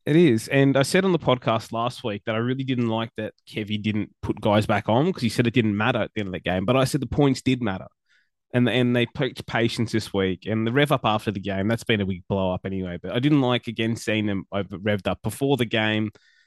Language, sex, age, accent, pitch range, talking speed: English, male, 20-39, Australian, 105-125 Hz, 275 wpm